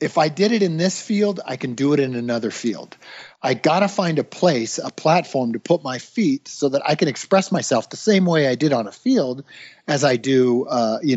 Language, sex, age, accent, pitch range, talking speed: English, male, 50-69, American, 125-185 Hz, 240 wpm